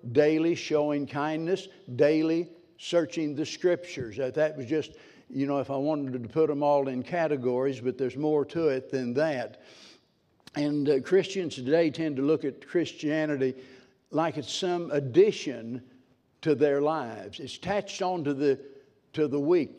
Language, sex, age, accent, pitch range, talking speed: English, male, 60-79, American, 140-170 Hz, 155 wpm